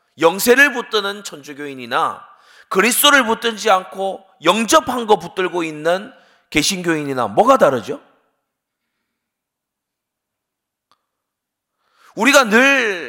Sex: male